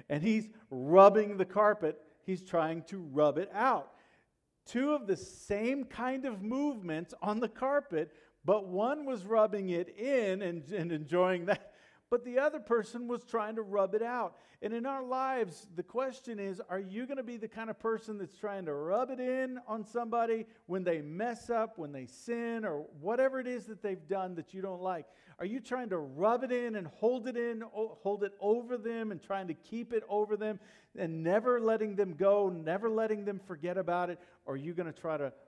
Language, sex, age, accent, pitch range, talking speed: English, male, 50-69, American, 175-240 Hz, 210 wpm